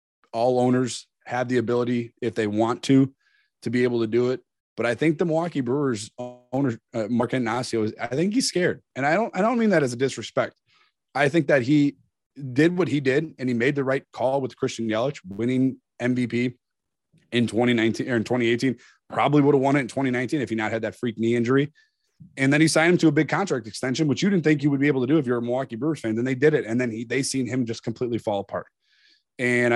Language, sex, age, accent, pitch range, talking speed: English, male, 20-39, American, 120-145 Hz, 235 wpm